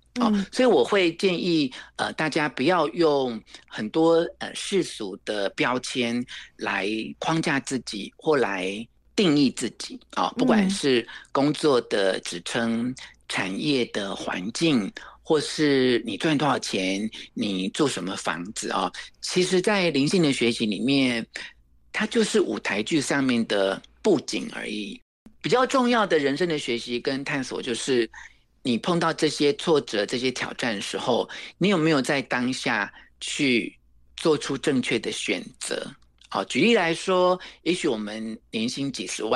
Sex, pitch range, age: male, 120-185 Hz, 50-69